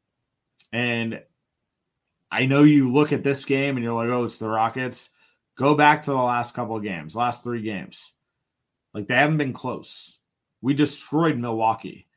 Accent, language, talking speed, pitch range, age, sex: American, English, 170 wpm, 115-150 Hz, 30-49, male